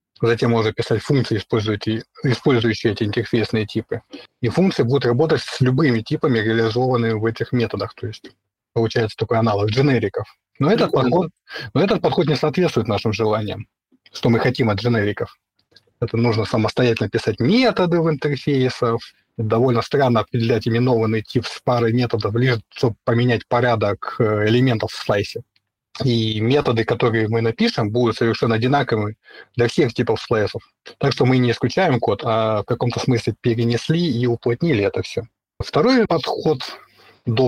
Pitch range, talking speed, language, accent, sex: 110-130 Hz, 145 wpm, Russian, native, male